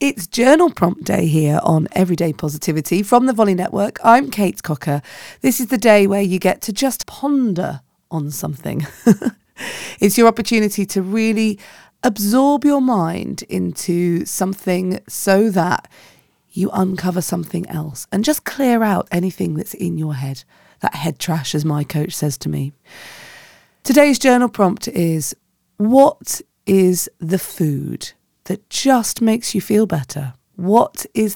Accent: British